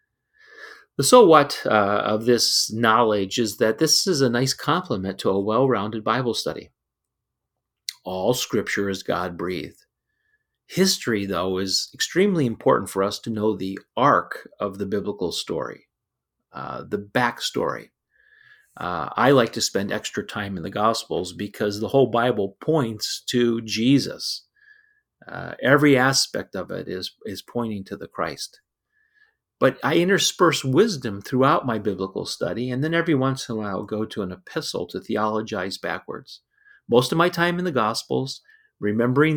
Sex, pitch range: male, 105-160 Hz